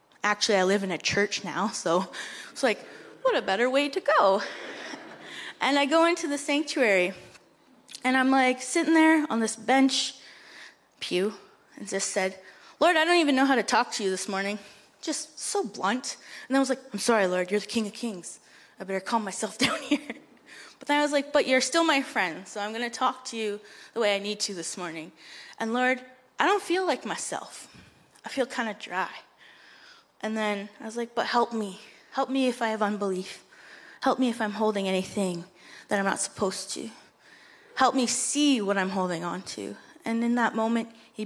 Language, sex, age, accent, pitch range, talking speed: English, female, 20-39, American, 200-260 Hz, 205 wpm